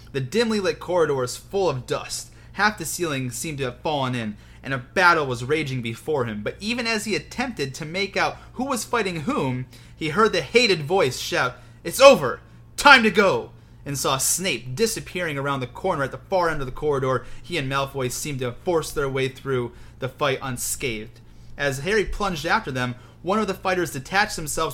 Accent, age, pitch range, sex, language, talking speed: American, 30-49, 125-185 Hz, male, English, 205 wpm